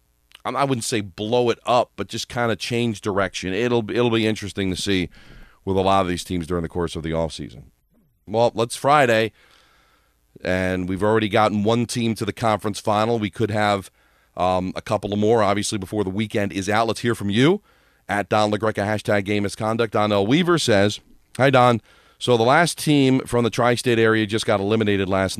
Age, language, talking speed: 40-59, English, 205 wpm